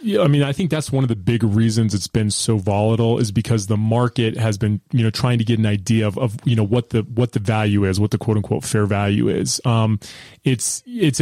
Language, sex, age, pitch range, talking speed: English, male, 20-39, 110-125 Hz, 255 wpm